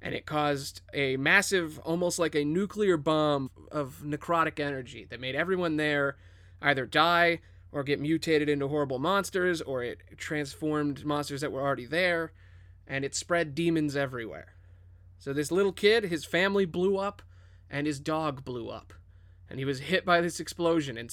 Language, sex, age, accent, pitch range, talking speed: English, male, 30-49, American, 125-175 Hz, 170 wpm